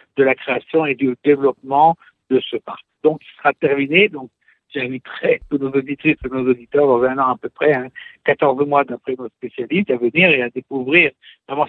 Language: French